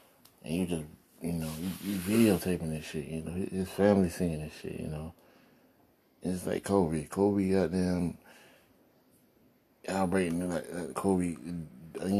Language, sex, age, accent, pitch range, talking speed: English, male, 30-49, American, 80-95 Hz, 135 wpm